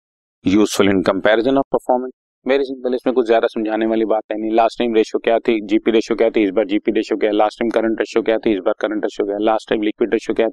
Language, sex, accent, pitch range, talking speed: Hindi, male, native, 105-120 Hz, 260 wpm